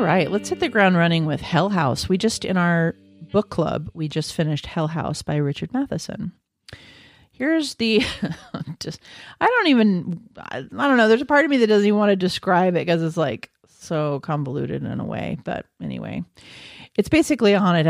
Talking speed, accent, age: 200 wpm, American, 40-59